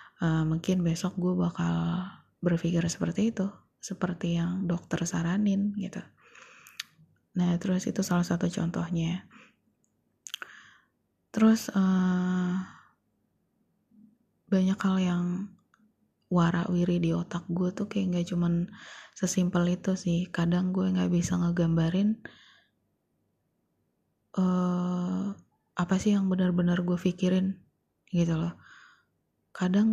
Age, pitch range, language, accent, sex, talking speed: 20-39, 175-195 Hz, Indonesian, native, female, 100 wpm